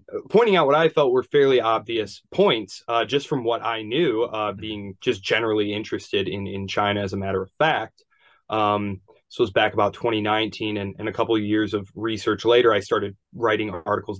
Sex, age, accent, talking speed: male, 20-39, American, 200 wpm